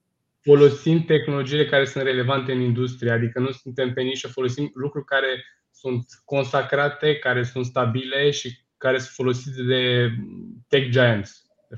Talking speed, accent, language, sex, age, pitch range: 145 wpm, native, Romanian, male, 20-39, 125-140 Hz